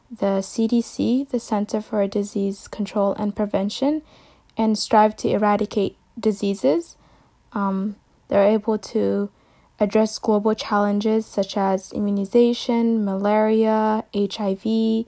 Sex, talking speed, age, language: female, 105 wpm, 20-39, English